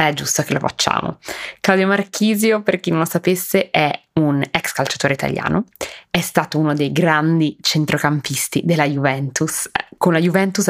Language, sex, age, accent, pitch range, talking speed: Italian, female, 20-39, native, 145-165 Hz, 155 wpm